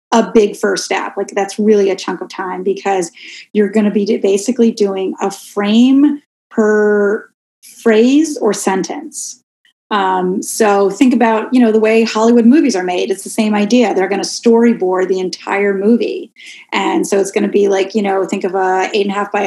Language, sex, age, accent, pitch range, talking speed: English, female, 30-49, American, 200-235 Hz, 195 wpm